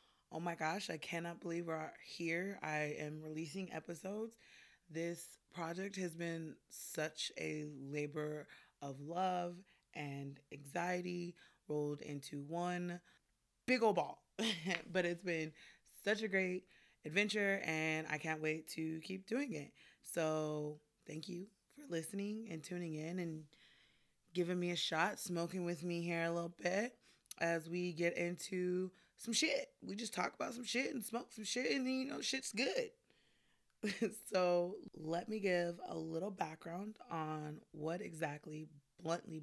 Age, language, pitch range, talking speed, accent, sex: 20-39, English, 155-185 Hz, 145 wpm, American, female